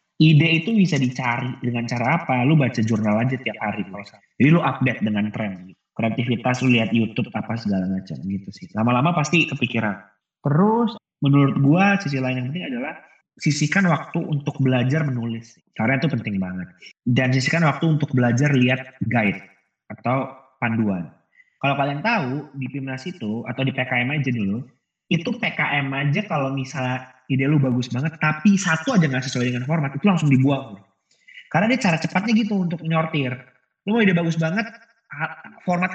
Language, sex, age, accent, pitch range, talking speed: Indonesian, male, 20-39, native, 120-170 Hz, 165 wpm